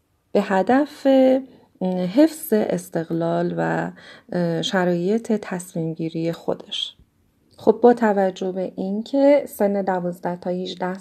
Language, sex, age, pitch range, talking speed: Persian, female, 30-49, 175-220 Hz, 100 wpm